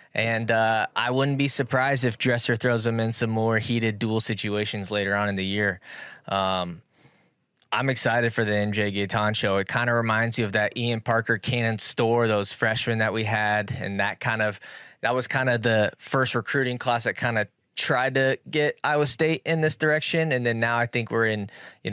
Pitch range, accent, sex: 105-125 Hz, American, male